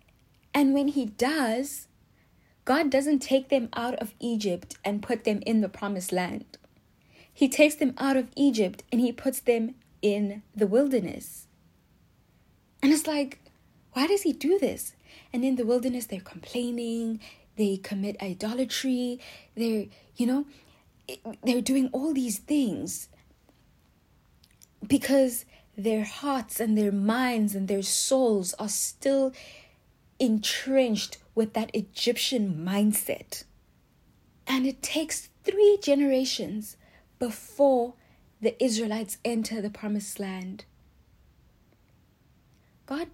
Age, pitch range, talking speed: 10-29, 210-270 Hz, 120 wpm